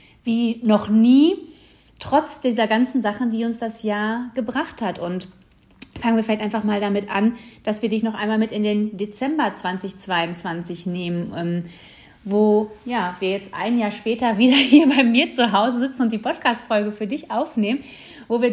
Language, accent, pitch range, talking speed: German, German, 205-240 Hz, 175 wpm